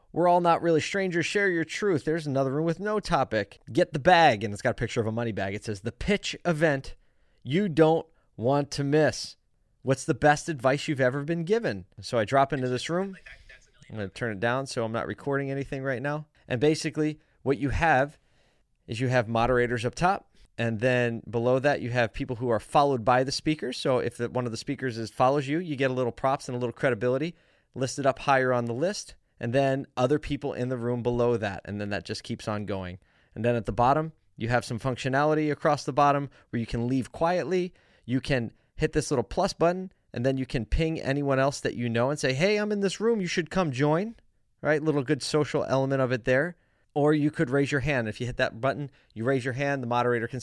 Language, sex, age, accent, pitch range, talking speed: English, male, 20-39, American, 120-155 Hz, 235 wpm